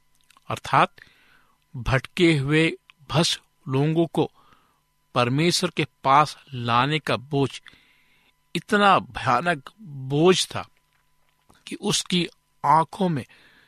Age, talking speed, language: 60-79, 90 wpm, Hindi